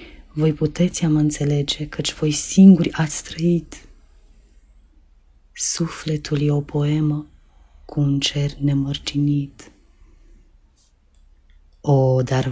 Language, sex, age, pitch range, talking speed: Romanian, female, 30-49, 145-185 Hz, 90 wpm